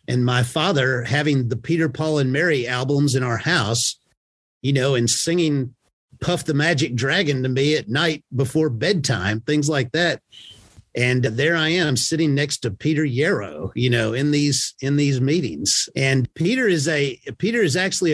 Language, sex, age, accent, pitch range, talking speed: English, male, 50-69, American, 125-155 Hz, 175 wpm